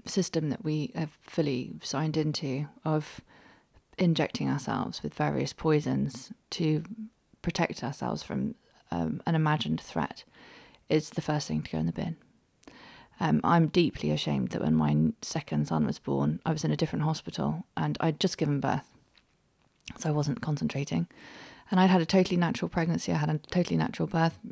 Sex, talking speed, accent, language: female, 170 wpm, British, English